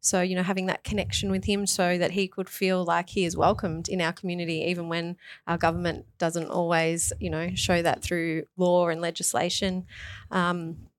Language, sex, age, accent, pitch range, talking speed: English, female, 20-39, Australian, 175-200 Hz, 190 wpm